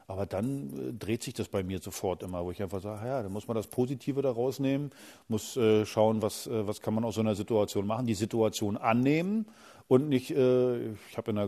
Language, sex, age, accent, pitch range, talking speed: German, male, 40-59, German, 105-120 Hz, 215 wpm